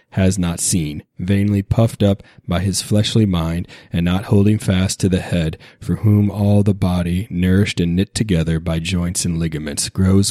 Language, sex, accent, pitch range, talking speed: English, male, American, 90-110 Hz, 180 wpm